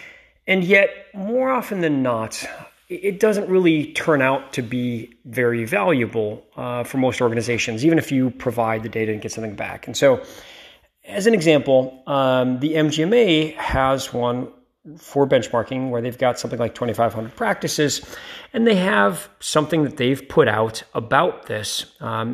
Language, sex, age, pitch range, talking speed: English, male, 40-59, 120-170 Hz, 160 wpm